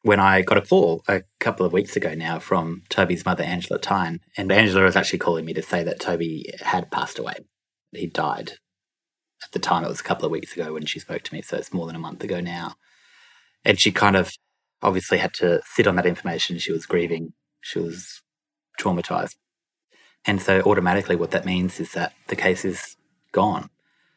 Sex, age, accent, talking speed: male, 30-49, Australian, 205 wpm